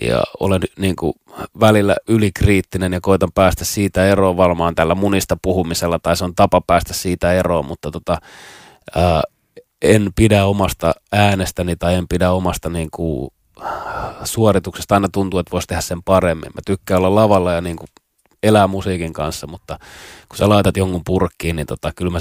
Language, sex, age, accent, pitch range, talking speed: Finnish, male, 30-49, native, 85-100 Hz, 160 wpm